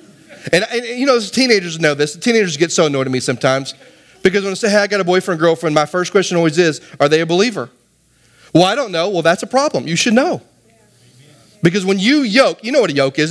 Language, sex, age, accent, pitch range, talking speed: English, male, 30-49, American, 180-240 Hz, 250 wpm